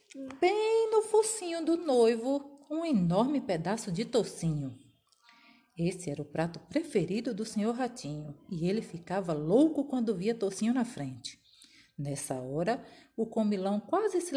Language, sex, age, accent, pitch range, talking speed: Portuguese, female, 40-59, Brazilian, 165-235 Hz, 140 wpm